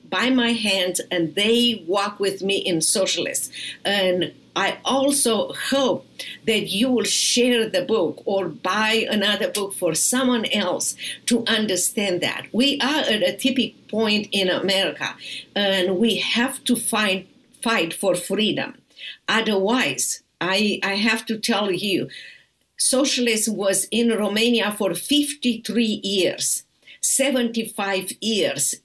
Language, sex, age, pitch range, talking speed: English, female, 50-69, 190-235 Hz, 130 wpm